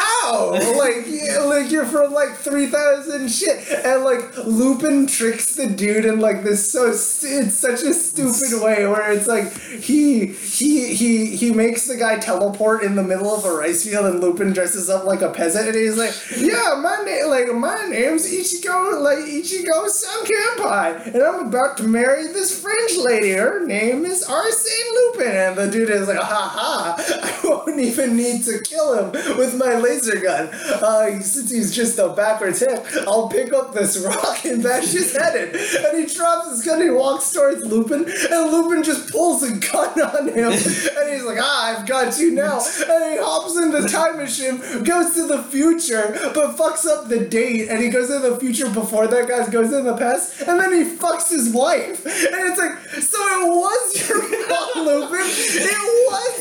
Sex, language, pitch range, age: male, English, 225-320 Hz, 20-39